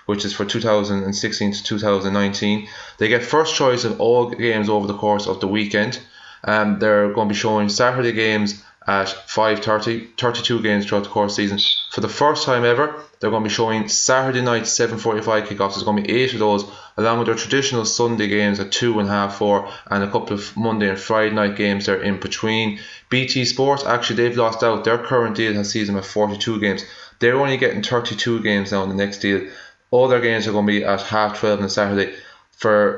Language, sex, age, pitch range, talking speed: English, male, 20-39, 100-120 Hz, 220 wpm